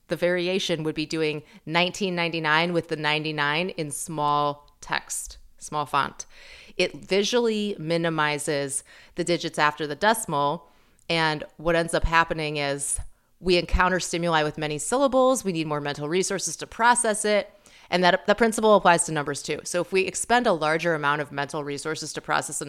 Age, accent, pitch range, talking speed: 30-49, American, 150-185 Hz, 165 wpm